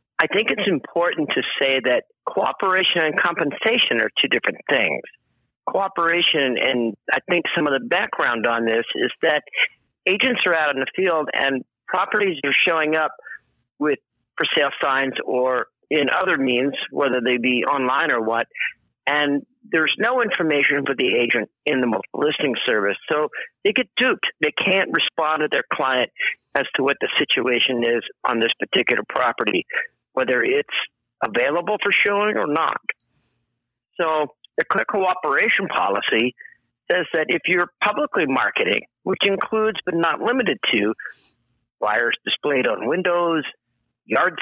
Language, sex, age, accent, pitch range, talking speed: English, male, 50-69, American, 130-180 Hz, 150 wpm